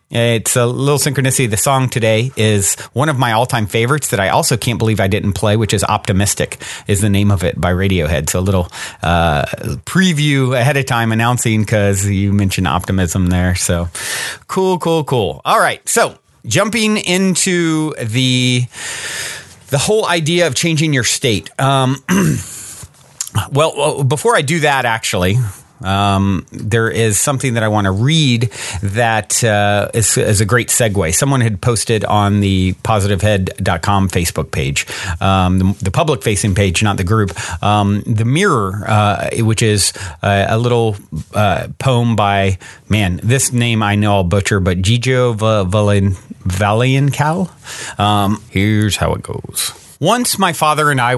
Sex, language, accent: male, English, American